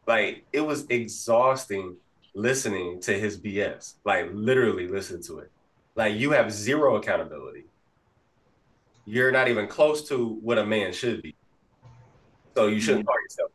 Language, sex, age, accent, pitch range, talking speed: English, male, 20-39, American, 115-150 Hz, 145 wpm